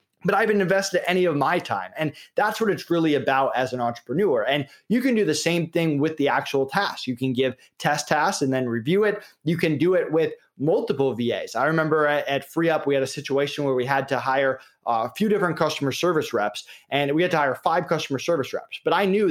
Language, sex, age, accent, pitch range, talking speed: English, male, 30-49, American, 135-170 Hz, 235 wpm